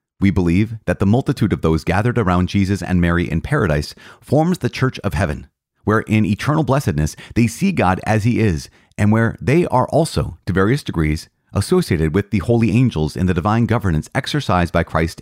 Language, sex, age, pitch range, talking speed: English, male, 30-49, 85-115 Hz, 195 wpm